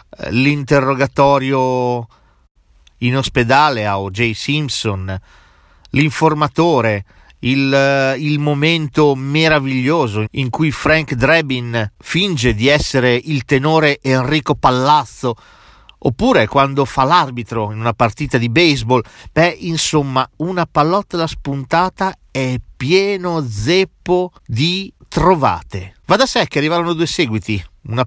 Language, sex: Italian, male